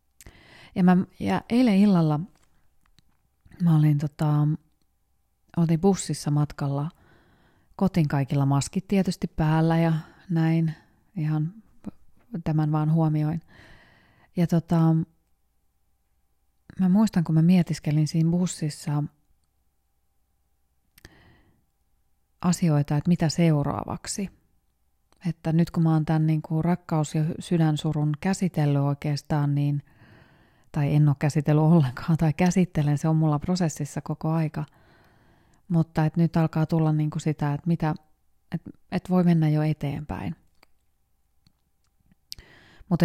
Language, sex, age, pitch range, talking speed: Finnish, female, 30-49, 140-170 Hz, 105 wpm